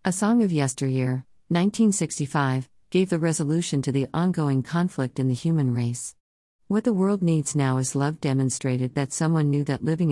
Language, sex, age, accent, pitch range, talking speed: English, female, 50-69, American, 130-165 Hz, 170 wpm